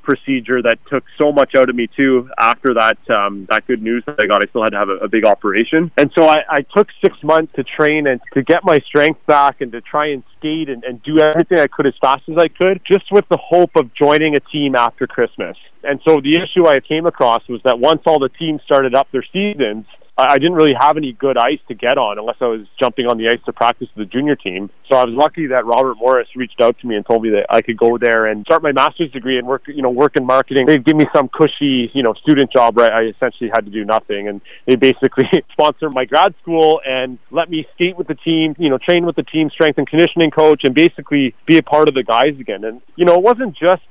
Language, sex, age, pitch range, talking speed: English, male, 30-49, 125-155 Hz, 265 wpm